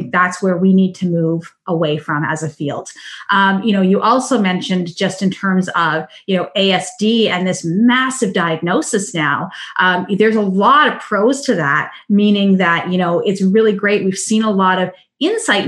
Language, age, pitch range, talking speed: English, 30-49, 180-225 Hz, 190 wpm